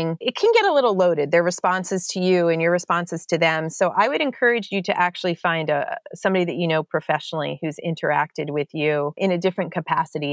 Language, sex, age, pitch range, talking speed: English, female, 30-49, 155-195 Hz, 215 wpm